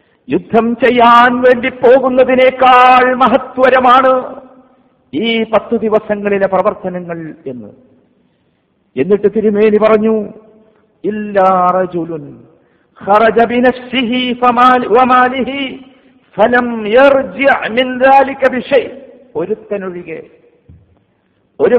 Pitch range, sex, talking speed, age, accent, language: 210-260 Hz, male, 40 wpm, 50-69, native, Malayalam